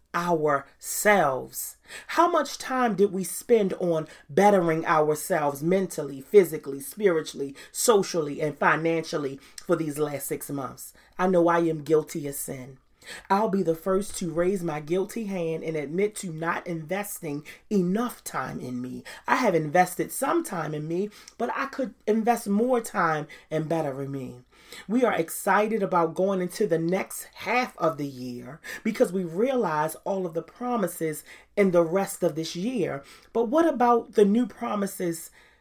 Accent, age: American, 30-49